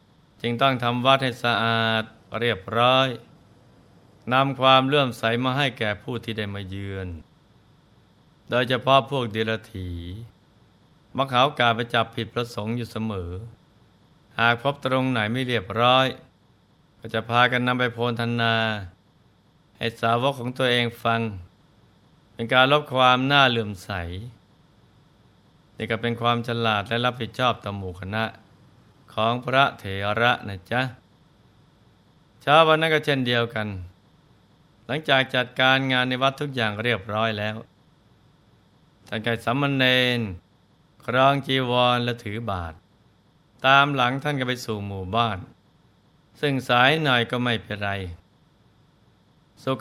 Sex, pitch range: male, 105-130 Hz